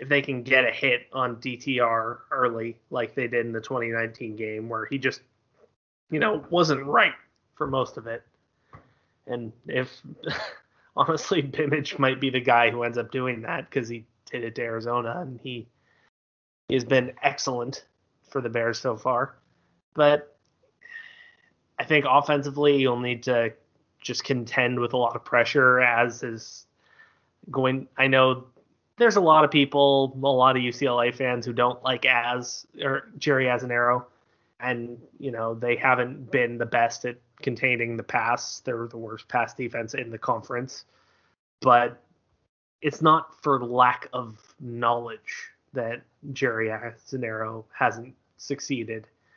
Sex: male